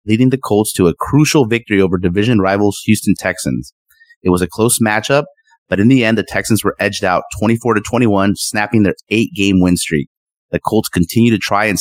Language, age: English, 30-49